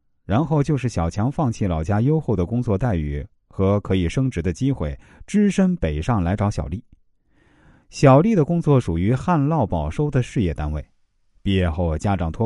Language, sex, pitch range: Chinese, male, 85-130 Hz